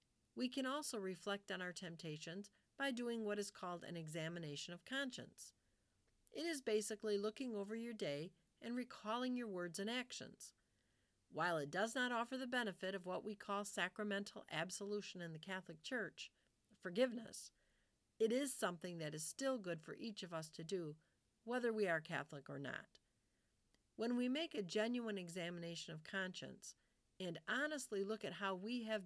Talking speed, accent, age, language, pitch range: 165 wpm, American, 50-69, English, 165-235 Hz